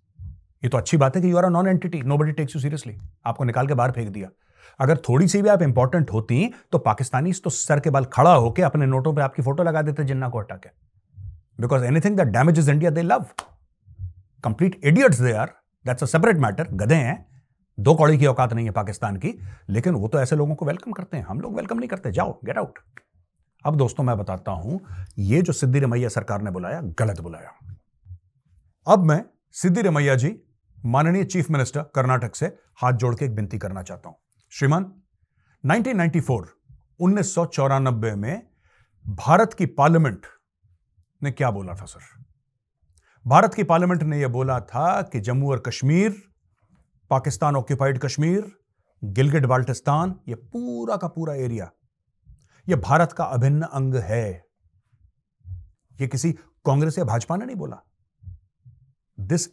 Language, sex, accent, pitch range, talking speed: Hindi, male, native, 110-160 Hz, 155 wpm